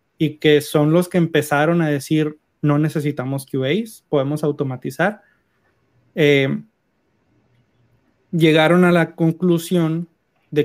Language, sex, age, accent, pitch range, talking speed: Spanish, male, 30-49, Mexican, 145-175 Hz, 105 wpm